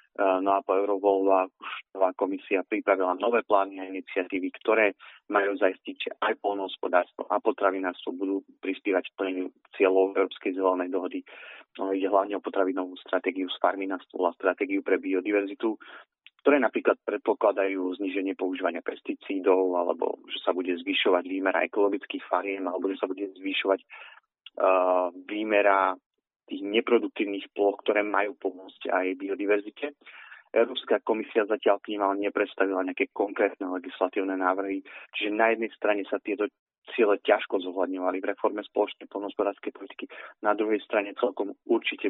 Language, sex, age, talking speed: Slovak, male, 30-49, 140 wpm